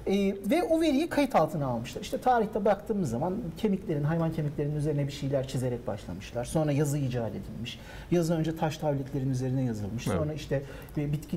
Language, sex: Turkish, male